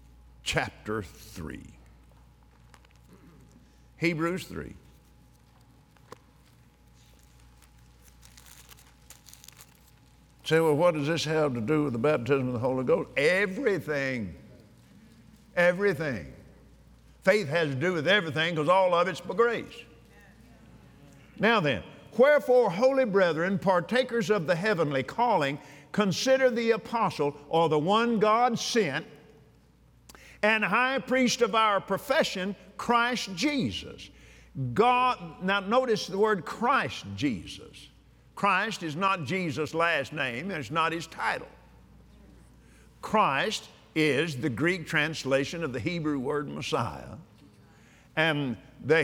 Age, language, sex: 50-69, English, male